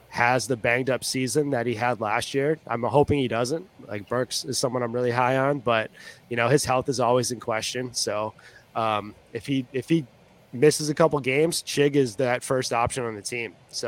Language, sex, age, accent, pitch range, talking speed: English, male, 20-39, American, 115-135 Hz, 220 wpm